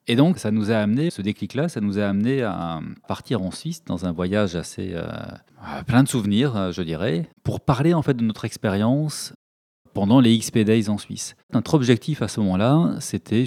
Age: 30-49